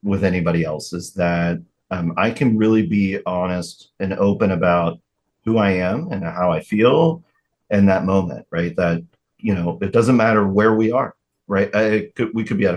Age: 30-49